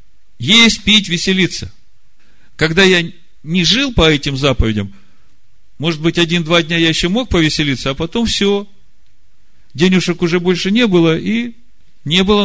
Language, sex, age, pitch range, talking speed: Russian, male, 50-69, 120-185 Hz, 140 wpm